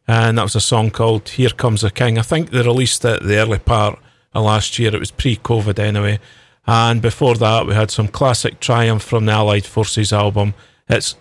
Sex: male